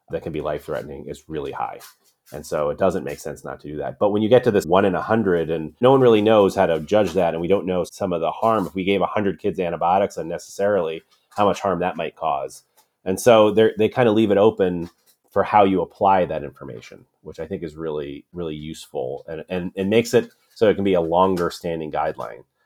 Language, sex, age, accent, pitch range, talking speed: English, male, 30-49, American, 85-110 Hz, 245 wpm